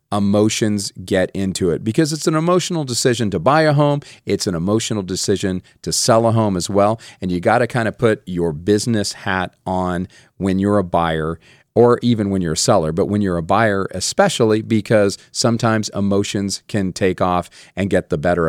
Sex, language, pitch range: male, English, 95-120 Hz